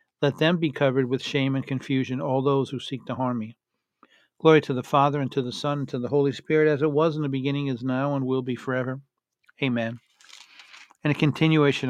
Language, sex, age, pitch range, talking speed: English, male, 50-69, 125-150 Hz, 220 wpm